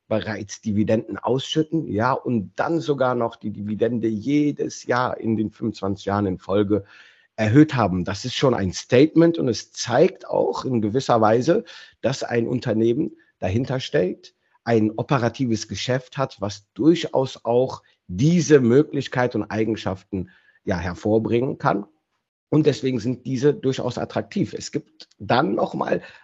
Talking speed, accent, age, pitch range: 140 wpm, German, 50-69, 105-135 Hz